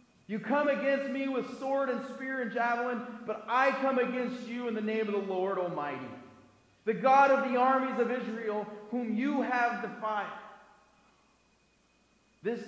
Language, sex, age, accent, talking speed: English, male, 30-49, American, 160 wpm